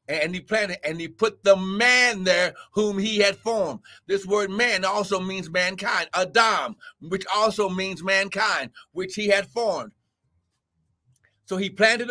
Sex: male